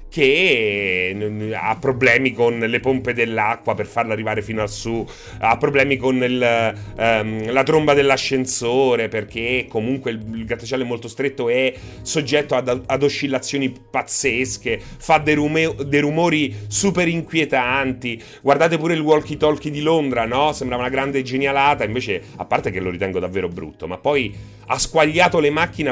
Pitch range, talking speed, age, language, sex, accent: 110-150 Hz, 150 wpm, 30-49, Italian, male, native